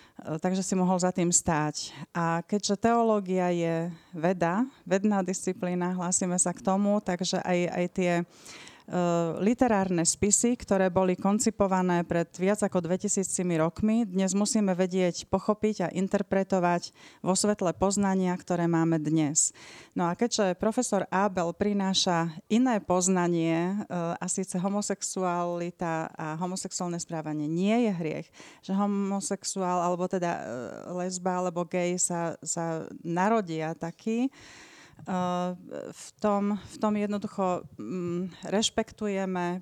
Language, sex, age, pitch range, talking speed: Slovak, female, 30-49, 175-200 Hz, 115 wpm